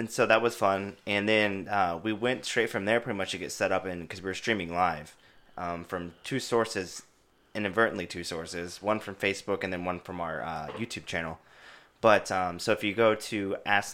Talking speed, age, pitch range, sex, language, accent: 220 wpm, 20-39, 90-105 Hz, male, English, American